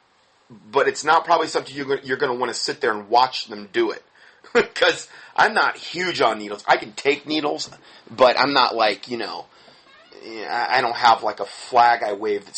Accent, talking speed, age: American, 205 wpm, 30-49